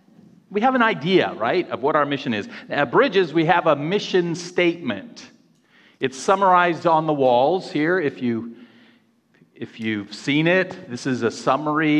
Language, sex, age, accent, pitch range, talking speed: English, male, 50-69, American, 130-180 Hz, 165 wpm